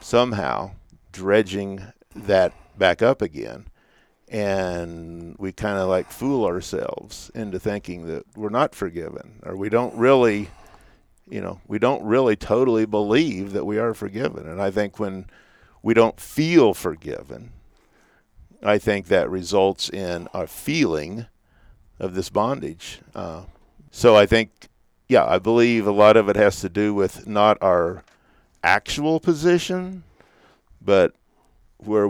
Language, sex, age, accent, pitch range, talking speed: English, male, 50-69, American, 95-115 Hz, 135 wpm